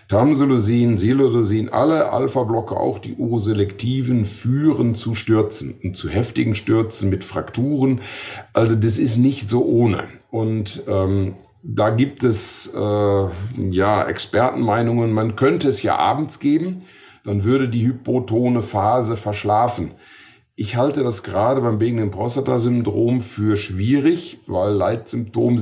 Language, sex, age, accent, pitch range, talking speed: German, male, 50-69, German, 105-130 Hz, 130 wpm